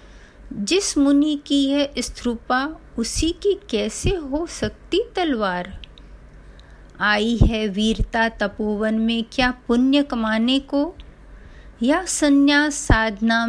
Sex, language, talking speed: female, Hindi, 100 wpm